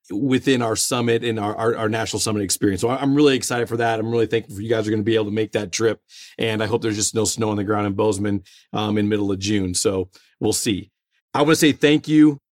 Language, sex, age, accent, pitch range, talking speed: English, male, 40-59, American, 115-140 Hz, 275 wpm